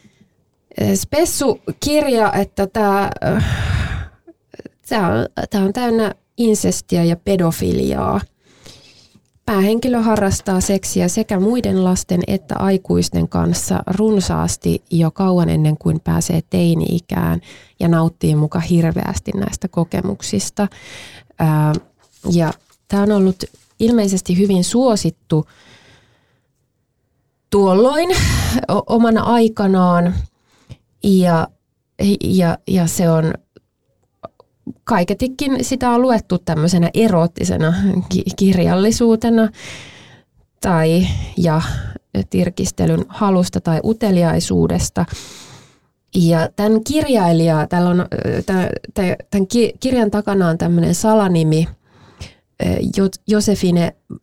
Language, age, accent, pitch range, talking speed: Finnish, 20-39, native, 160-205 Hz, 75 wpm